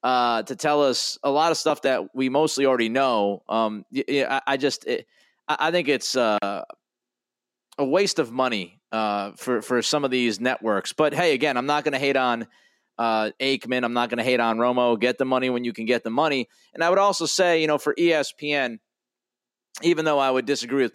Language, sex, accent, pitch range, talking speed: English, male, American, 120-150 Hz, 215 wpm